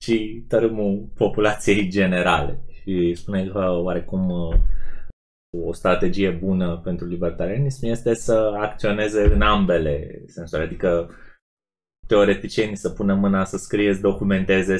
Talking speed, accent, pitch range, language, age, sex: 115 wpm, native, 90-110 Hz, Romanian, 20-39, male